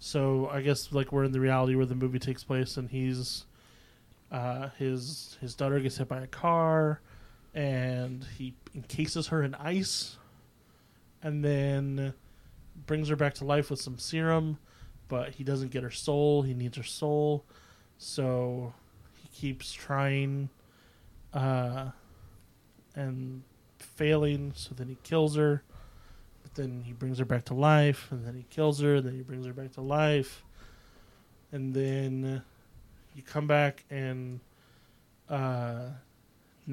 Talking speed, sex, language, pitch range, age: 145 wpm, male, English, 125-145 Hz, 20-39